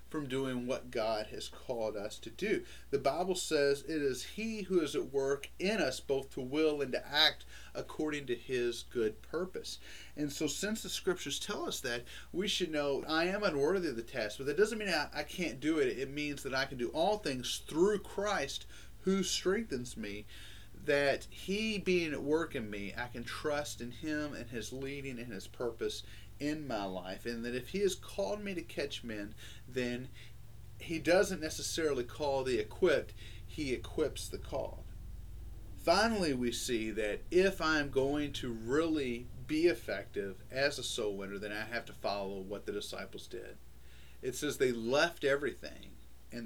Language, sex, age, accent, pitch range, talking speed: English, male, 40-59, American, 115-160 Hz, 185 wpm